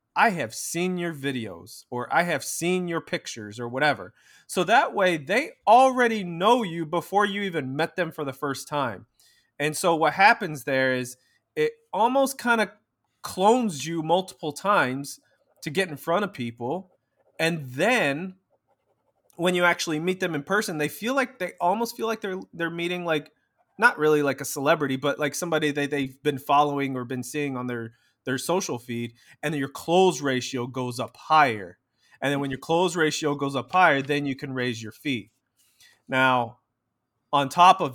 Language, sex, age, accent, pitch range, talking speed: English, male, 20-39, American, 130-170 Hz, 185 wpm